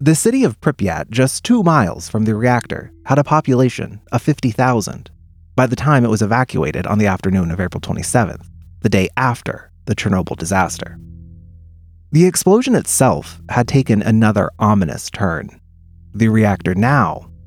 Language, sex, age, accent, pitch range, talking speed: English, male, 30-49, American, 85-135 Hz, 150 wpm